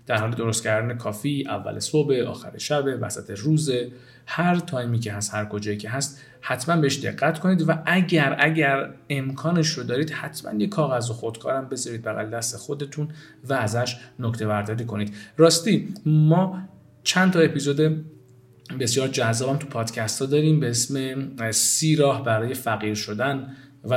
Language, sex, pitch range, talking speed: Persian, male, 115-145 Hz, 155 wpm